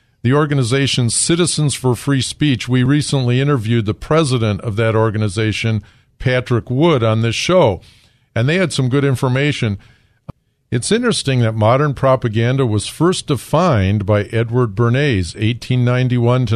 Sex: male